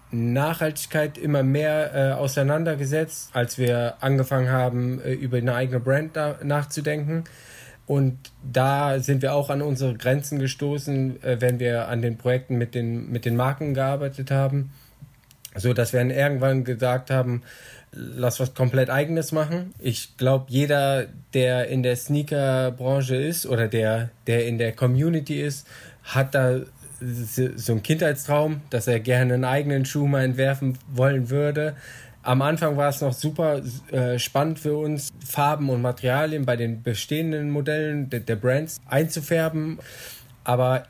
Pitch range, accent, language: 125-145 Hz, German, German